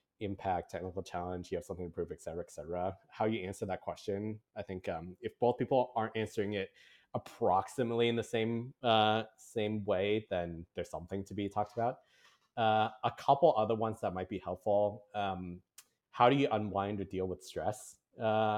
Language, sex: English, male